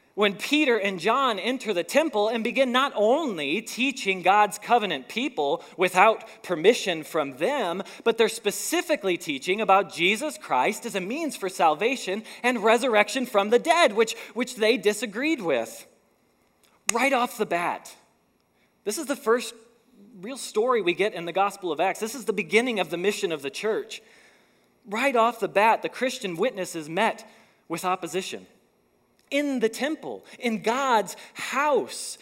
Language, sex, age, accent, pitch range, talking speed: English, male, 20-39, American, 190-250 Hz, 155 wpm